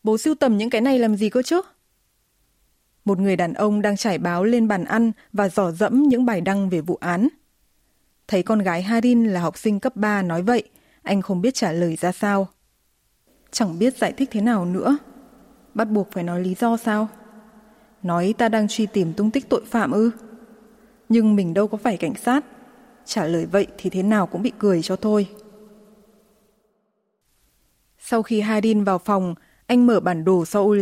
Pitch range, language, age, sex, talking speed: 190-235 Hz, Vietnamese, 20-39, female, 195 wpm